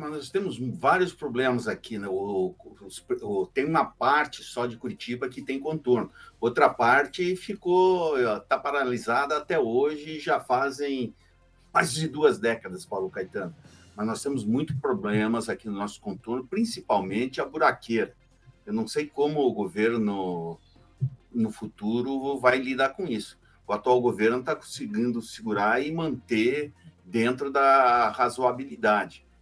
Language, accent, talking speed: Portuguese, Brazilian, 135 wpm